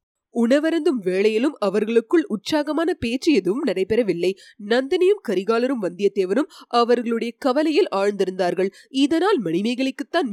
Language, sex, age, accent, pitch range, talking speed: Tamil, female, 30-49, native, 200-295 Hz, 85 wpm